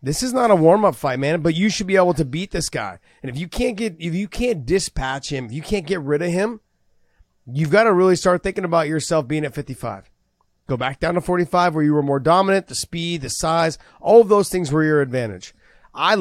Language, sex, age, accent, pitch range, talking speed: English, male, 30-49, American, 150-195 Hz, 255 wpm